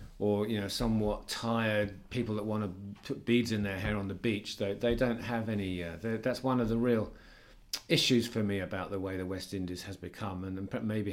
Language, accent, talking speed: English, British, 220 wpm